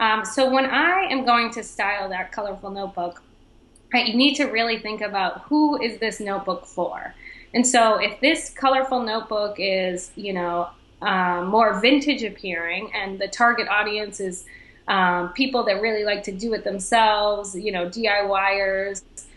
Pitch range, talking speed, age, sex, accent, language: 195-230 Hz, 160 wpm, 20-39, female, American, English